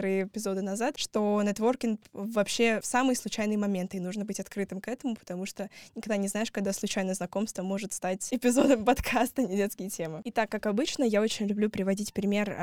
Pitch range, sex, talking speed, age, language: 185-215 Hz, female, 190 wpm, 10-29, Russian